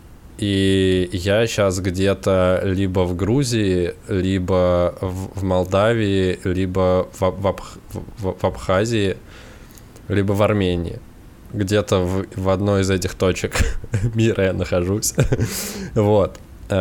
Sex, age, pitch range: male, 20-39, 85-105 Hz